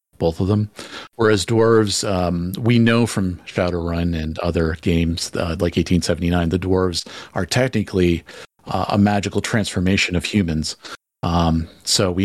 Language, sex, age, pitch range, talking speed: English, male, 40-59, 85-105 Hz, 140 wpm